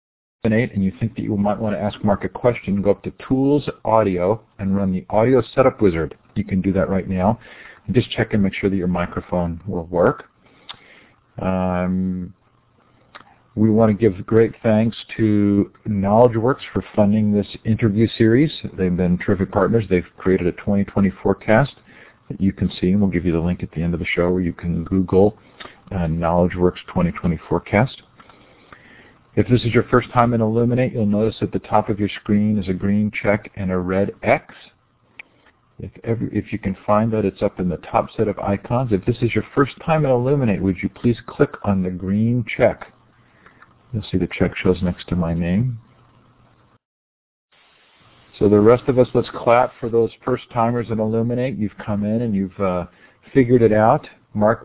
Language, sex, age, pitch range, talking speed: English, male, 50-69, 95-120 Hz, 190 wpm